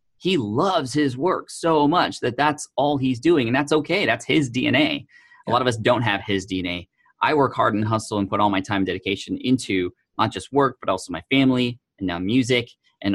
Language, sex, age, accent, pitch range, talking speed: English, male, 30-49, American, 100-130 Hz, 225 wpm